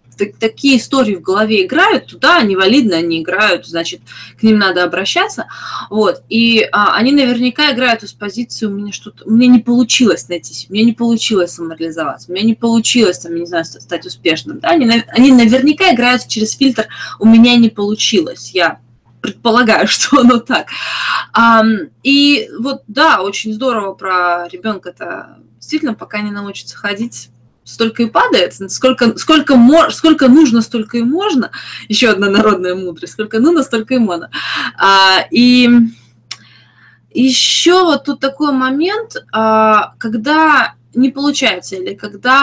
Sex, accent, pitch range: female, native, 185-250 Hz